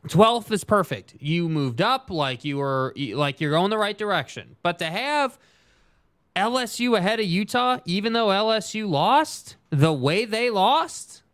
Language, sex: English, male